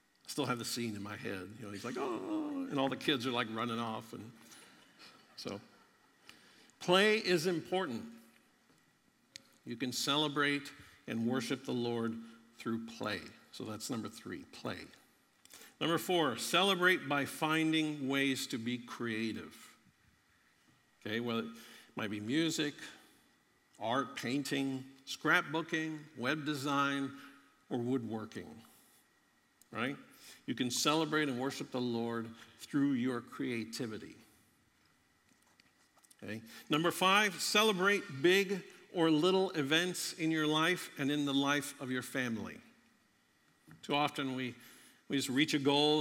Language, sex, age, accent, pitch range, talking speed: English, male, 60-79, American, 115-155 Hz, 130 wpm